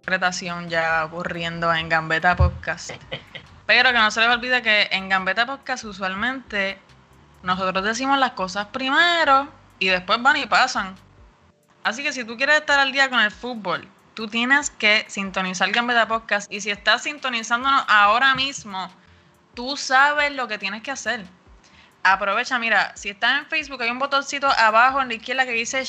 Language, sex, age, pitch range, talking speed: Spanish, female, 20-39, 195-240 Hz, 165 wpm